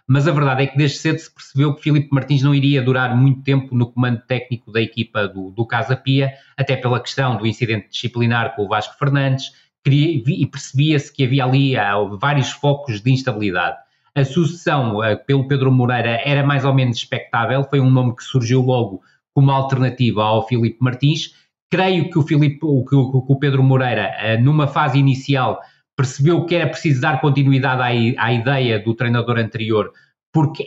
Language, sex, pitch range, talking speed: Portuguese, male, 125-150 Hz, 175 wpm